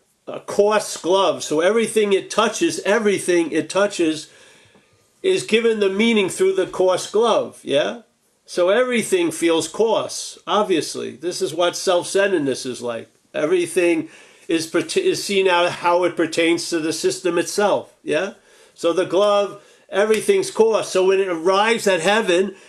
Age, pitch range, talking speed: 50-69, 185-245 Hz, 140 wpm